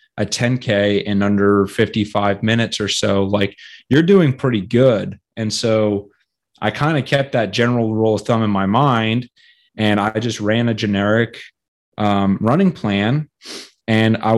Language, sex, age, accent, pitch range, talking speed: English, male, 30-49, American, 105-125 Hz, 160 wpm